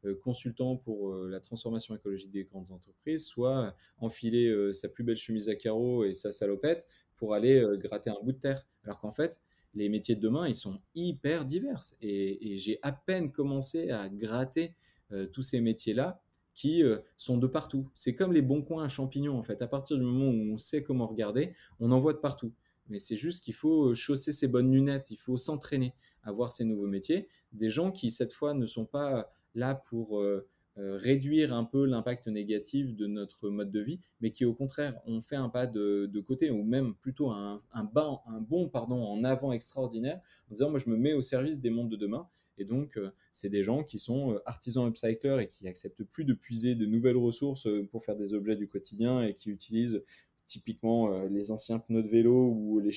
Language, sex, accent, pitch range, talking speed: French, male, French, 105-135 Hz, 215 wpm